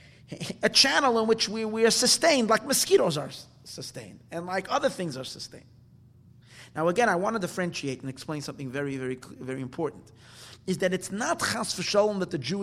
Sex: male